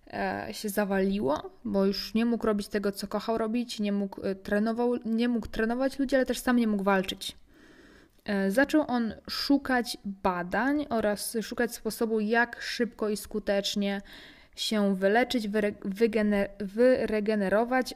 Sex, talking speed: female, 120 wpm